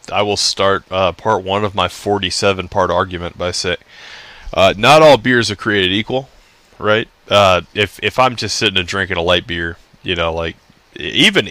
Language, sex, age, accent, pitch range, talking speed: English, male, 20-39, American, 90-110 Hz, 190 wpm